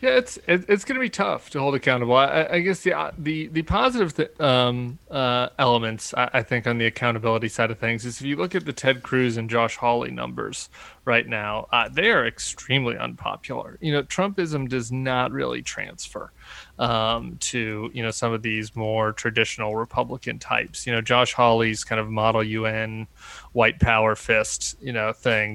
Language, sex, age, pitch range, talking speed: English, male, 30-49, 115-140 Hz, 190 wpm